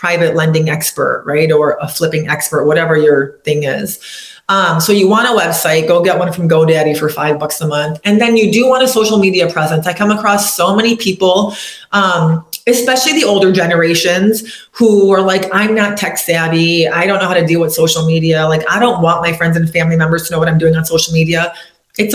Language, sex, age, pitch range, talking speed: English, female, 30-49, 165-195 Hz, 220 wpm